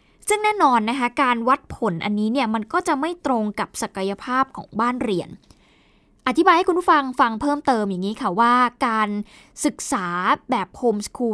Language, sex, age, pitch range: Thai, female, 20-39, 210-275 Hz